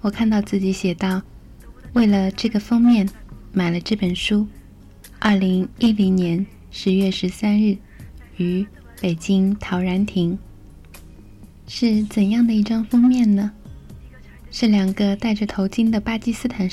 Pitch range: 185-215 Hz